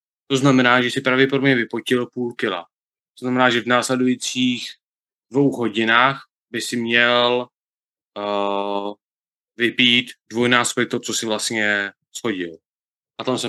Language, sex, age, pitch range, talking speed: Czech, male, 20-39, 105-125 Hz, 130 wpm